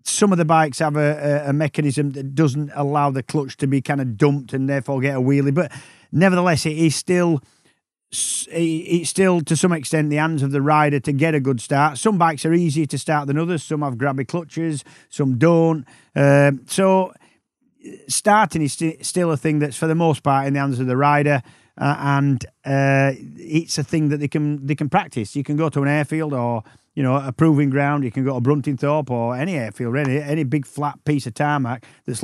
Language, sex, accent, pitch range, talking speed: English, male, British, 135-155 Hz, 215 wpm